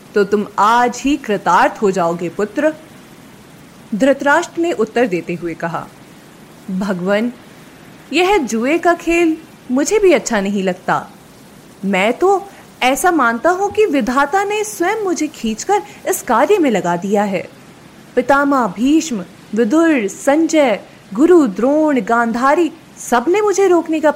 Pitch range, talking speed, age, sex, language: 205-330 Hz, 130 wpm, 30-49, female, Hindi